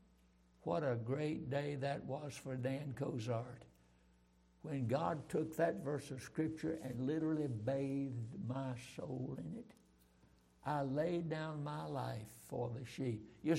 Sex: male